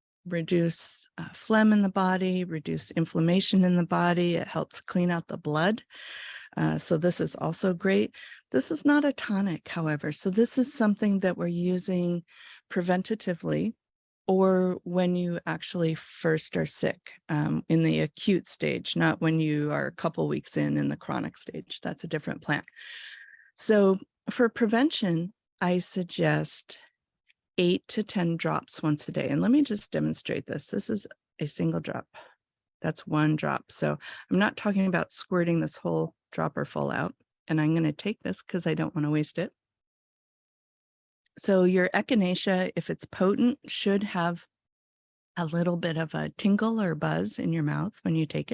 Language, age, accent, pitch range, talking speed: English, 40-59, American, 160-200 Hz, 170 wpm